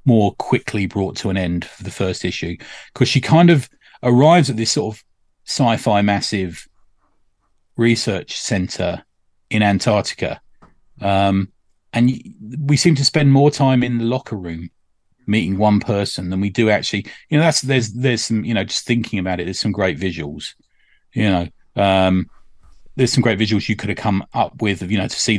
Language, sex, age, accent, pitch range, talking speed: English, male, 30-49, British, 95-120 Hz, 180 wpm